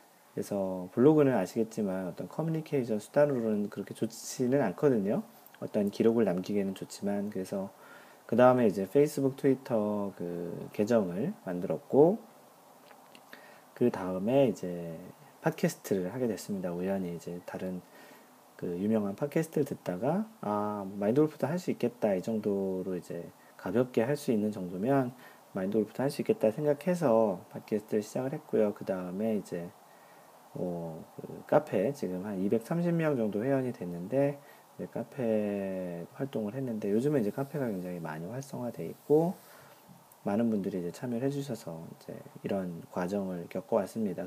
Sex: male